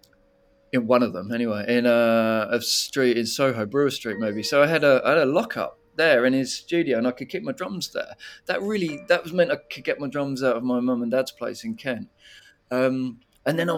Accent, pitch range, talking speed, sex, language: British, 115-140 Hz, 235 wpm, male, English